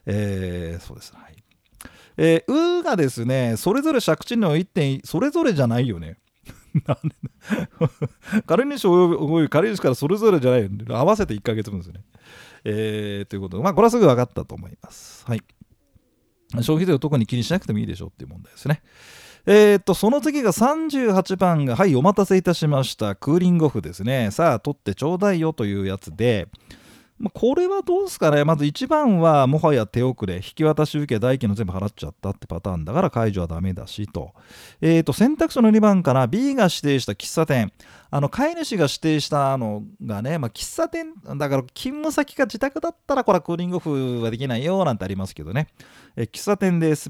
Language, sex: Japanese, male